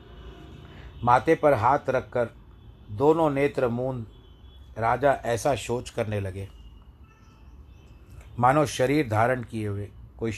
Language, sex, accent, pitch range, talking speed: Hindi, male, native, 90-130 Hz, 105 wpm